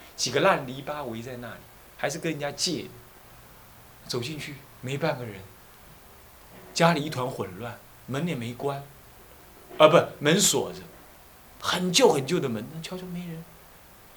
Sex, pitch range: male, 120-185 Hz